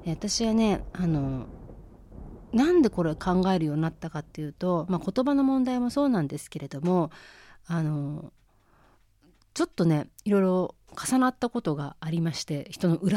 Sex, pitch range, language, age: female, 155-225 Hz, Japanese, 30-49